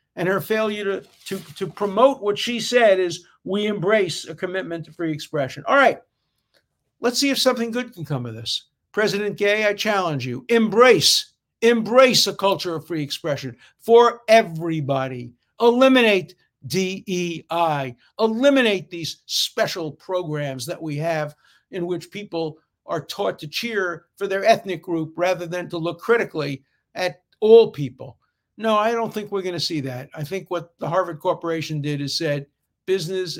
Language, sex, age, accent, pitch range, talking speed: English, male, 60-79, American, 145-200 Hz, 160 wpm